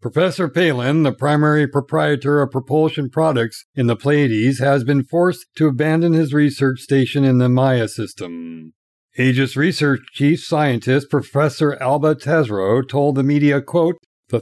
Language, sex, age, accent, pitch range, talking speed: English, male, 60-79, American, 125-155 Hz, 145 wpm